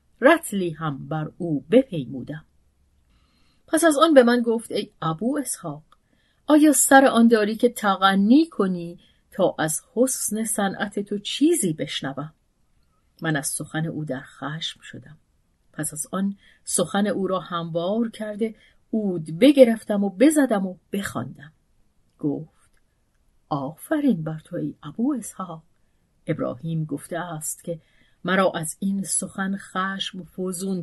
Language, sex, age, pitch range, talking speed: Persian, female, 40-59, 160-230 Hz, 130 wpm